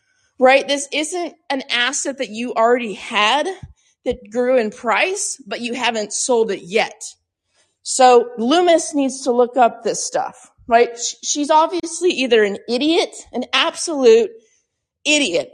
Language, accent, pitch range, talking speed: English, American, 235-300 Hz, 140 wpm